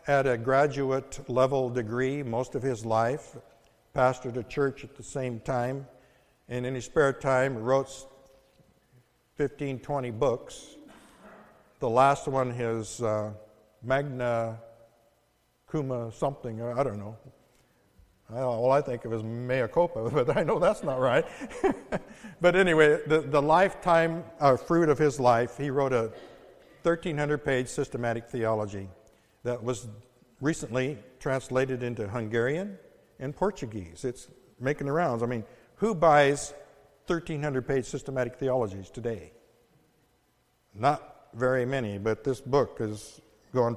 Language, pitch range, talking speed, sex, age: English, 115-140 Hz, 130 wpm, male, 60-79